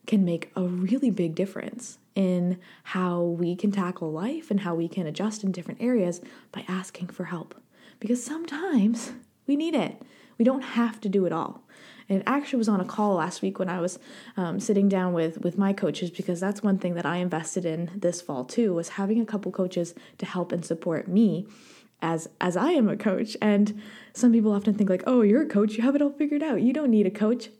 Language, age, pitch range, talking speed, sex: English, 20-39, 180-235 Hz, 225 wpm, female